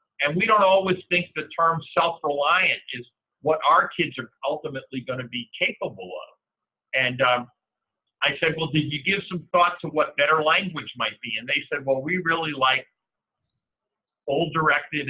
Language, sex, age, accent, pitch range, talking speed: English, male, 50-69, American, 130-170 Hz, 170 wpm